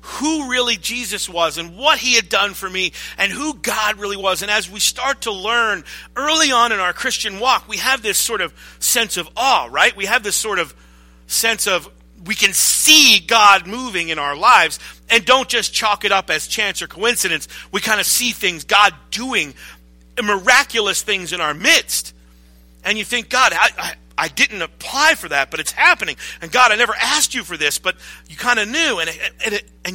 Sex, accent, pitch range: male, American, 185-250 Hz